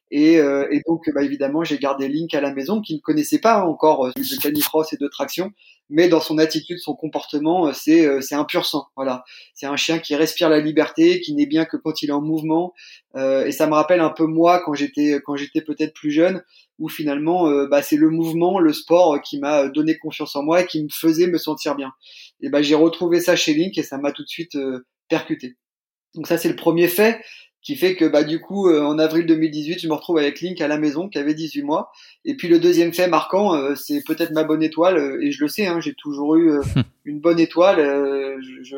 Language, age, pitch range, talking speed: French, 30-49, 145-175 Hz, 250 wpm